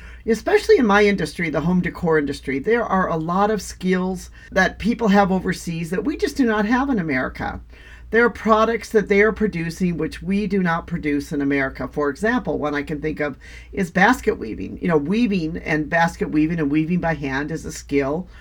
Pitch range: 150-210 Hz